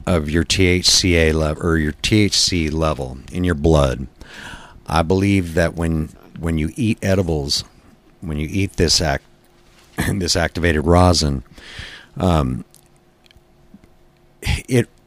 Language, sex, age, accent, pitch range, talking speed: English, male, 50-69, American, 80-95 Hz, 115 wpm